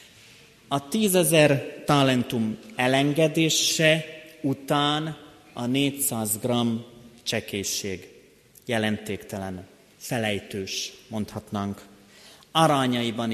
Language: Hungarian